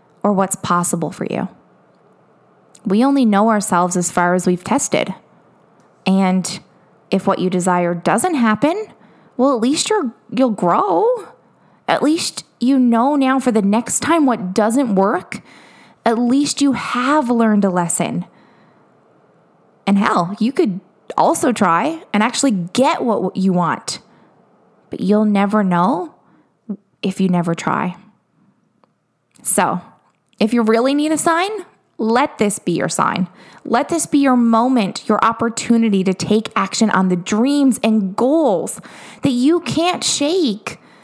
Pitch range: 190-255 Hz